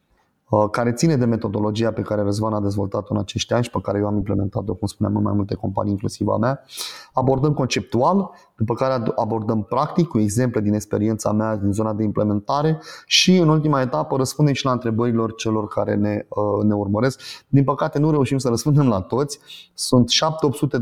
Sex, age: male, 30-49